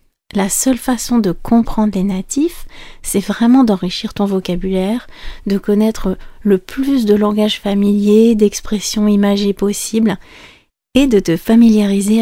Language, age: French, 40-59